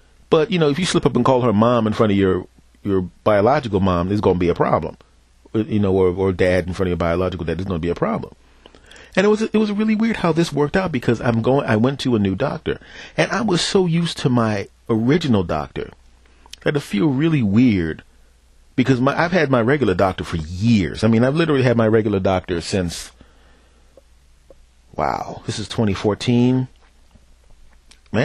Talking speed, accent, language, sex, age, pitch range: 210 wpm, American, English, male, 40-59, 80-130 Hz